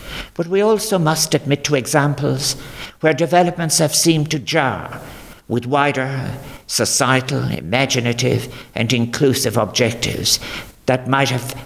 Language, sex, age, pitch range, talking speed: English, male, 60-79, 130-170 Hz, 120 wpm